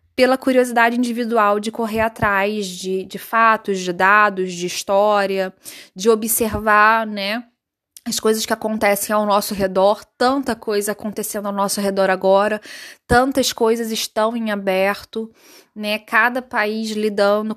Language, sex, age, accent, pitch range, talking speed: Portuguese, female, 20-39, Brazilian, 210-245 Hz, 135 wpm